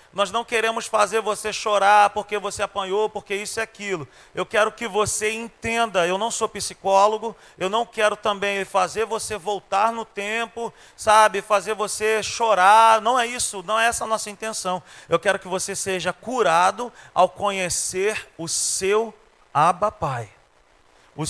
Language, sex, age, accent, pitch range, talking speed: Portuguese, male, 40-59, Brazilian, 180-230 Hz, 160 wpm